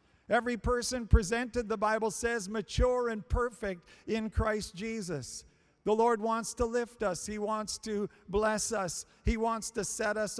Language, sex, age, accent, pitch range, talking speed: English, male, 50-69, American, 200-235 Hz, 160 wpm